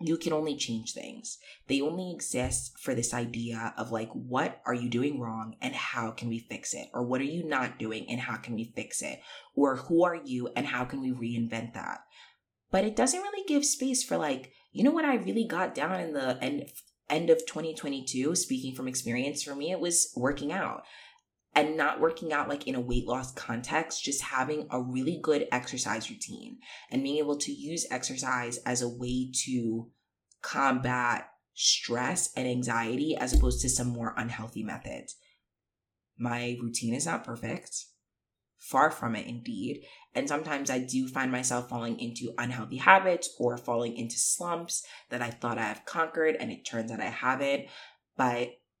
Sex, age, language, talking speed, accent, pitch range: female, 20-39, English, 185 wpm, American, 120-155 Hz